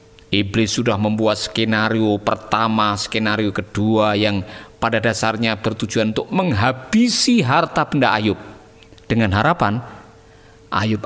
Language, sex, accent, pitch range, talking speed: Indonesian, male, native, 105-135 Hz, 105 wpm